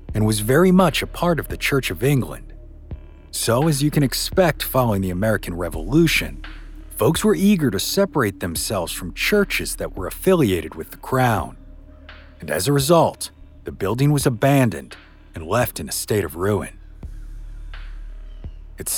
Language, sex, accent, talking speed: English, male, American, 160 wpm